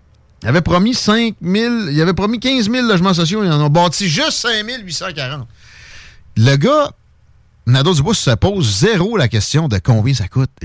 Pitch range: 115-165 Hz